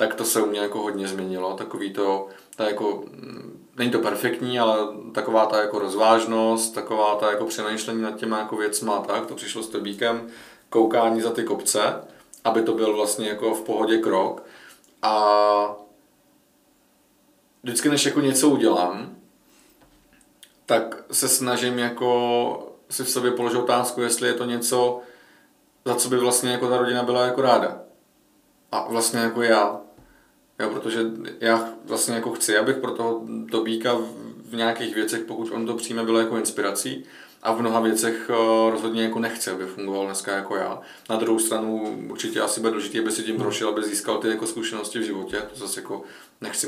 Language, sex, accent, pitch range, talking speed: Czech, male, native, 105-120 Hz, 165 wpm